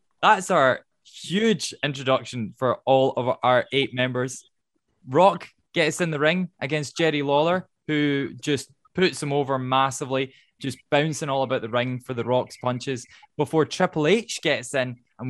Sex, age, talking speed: male, 10-29, 155 wpm